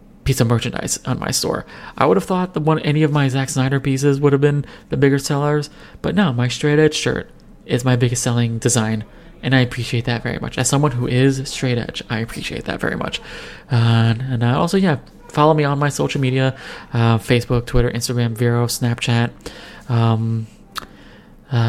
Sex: male